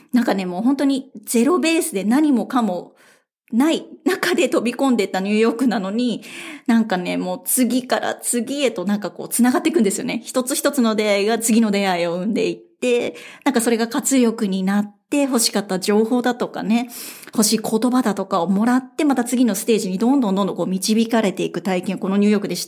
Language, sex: Japanese, female